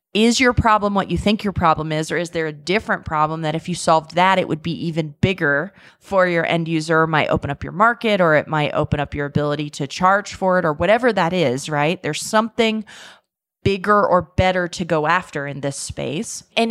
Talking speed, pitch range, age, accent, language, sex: 225 wpm, 170-225 Hz, 30-49, American, English, female